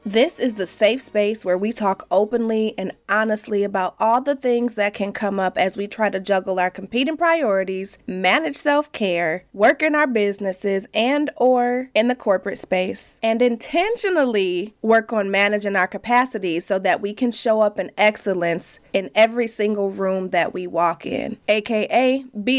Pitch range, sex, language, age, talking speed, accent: 200-245 Hz, female, English, 20-39, 170 wpm, American